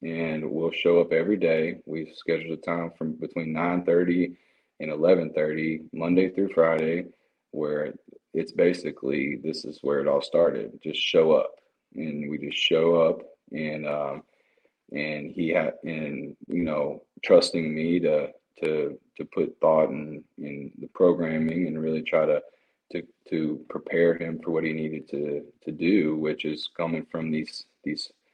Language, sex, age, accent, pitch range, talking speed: English, male, 30-49, American, 80-90 Hz, 165 wpm